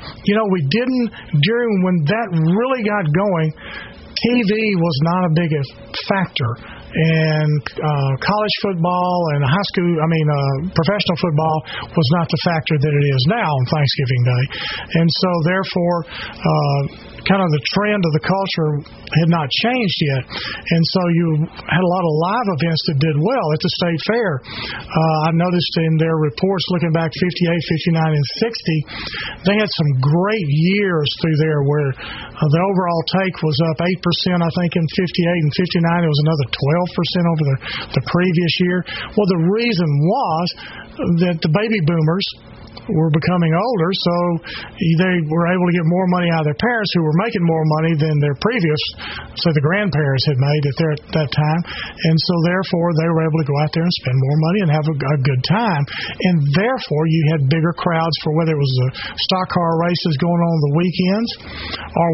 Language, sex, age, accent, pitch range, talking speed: English, male, 40-59, American, 150-180 Hz, 185 wpm